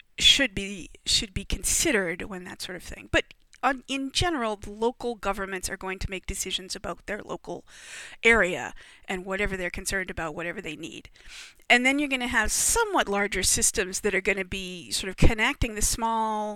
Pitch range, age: 190-220 Hz, 40-59